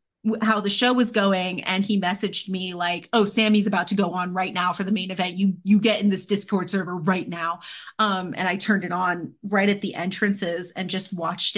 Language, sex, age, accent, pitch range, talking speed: English, female, 30-49, American, 180-210 Hz, 230 wpm